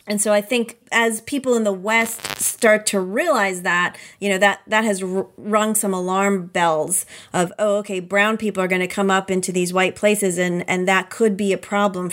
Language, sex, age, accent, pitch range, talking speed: English, female, 30-49, American, 195-230 Hz, 215 wpm